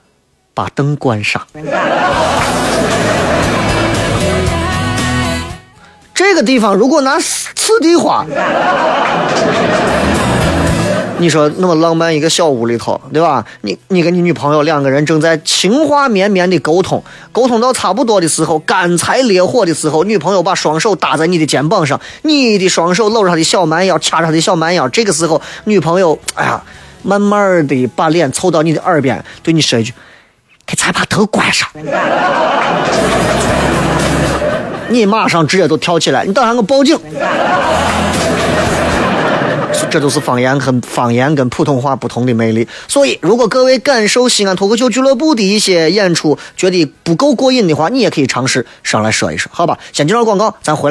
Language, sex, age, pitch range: Chinese, male, 30-49, 140-205 Hz